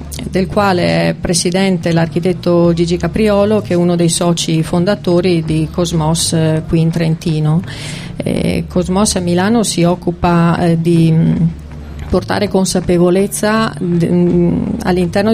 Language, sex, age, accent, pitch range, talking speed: Italian, female, 40-59, native, 165-185 Hz, 105 wpm